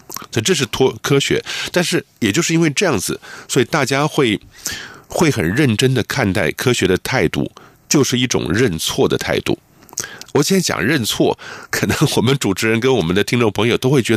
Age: 50-69